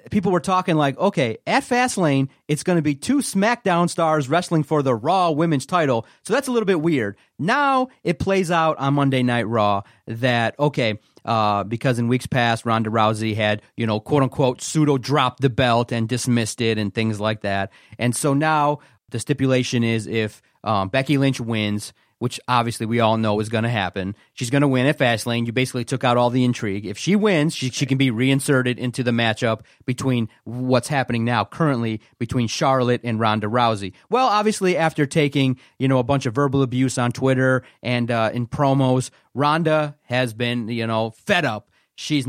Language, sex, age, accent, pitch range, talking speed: English, male, 30-49, American, 115-145 Hz, 195 wpm